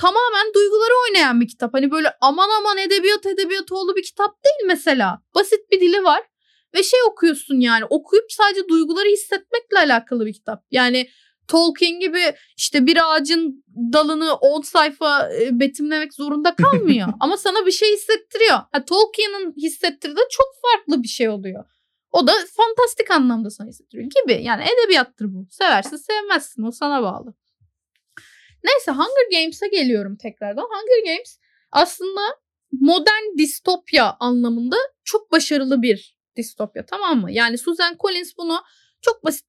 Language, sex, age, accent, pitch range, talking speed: Turkish, female, 10-29, native, 255-385 Hz, 145 wpm